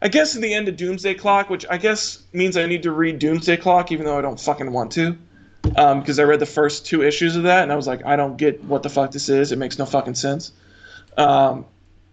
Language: English